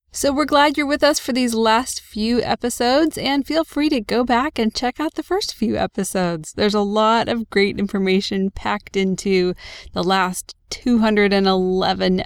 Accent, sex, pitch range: American, female, 195-255 Hz